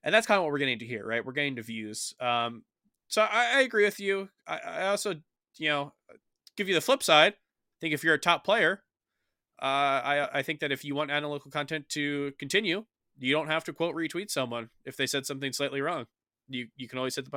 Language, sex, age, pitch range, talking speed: English, male, 20-39, 130-170 Hz, 240 wpm